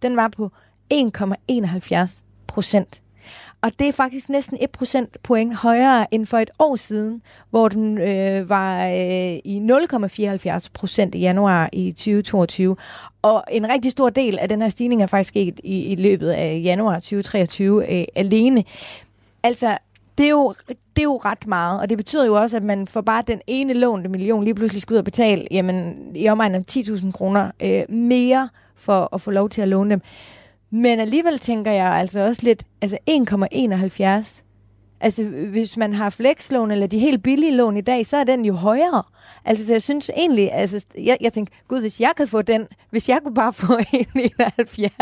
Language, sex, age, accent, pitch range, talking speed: Danish, female, 30-49, native, 195-245 Hz, 190 wpm